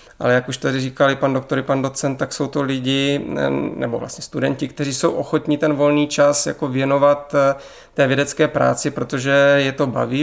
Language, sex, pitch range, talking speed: Czech, male, 130-145 Hz, 180 wpm